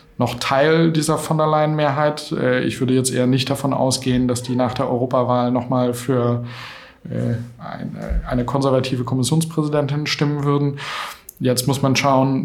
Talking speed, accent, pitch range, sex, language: 145 wpm, German, 125-145 Hz, male, German